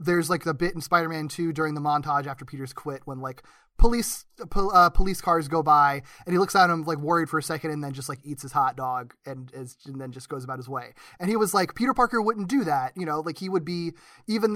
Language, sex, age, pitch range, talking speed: English, male, 20-39, 155-190 Hz, 265 wpm